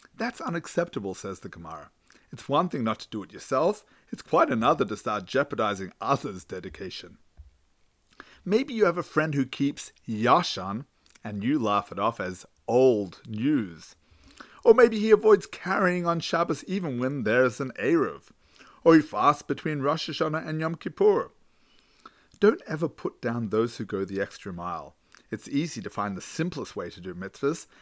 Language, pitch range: English, 110-160 Hz